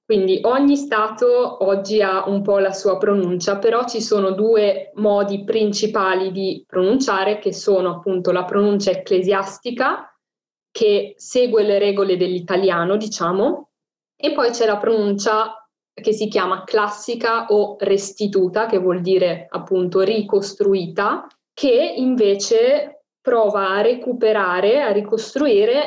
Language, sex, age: Italian, female, 20-39